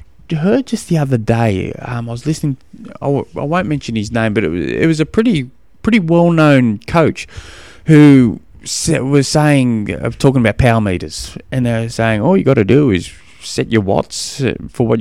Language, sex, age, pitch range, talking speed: English, male, 20-39, 105-155 Hz, 185 wpm